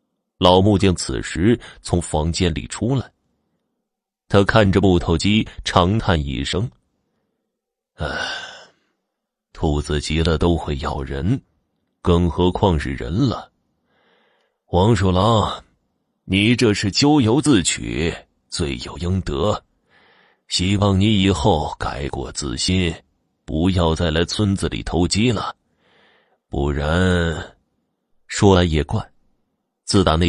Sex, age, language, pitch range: male, 30-49, Chinese, 80-105 Hz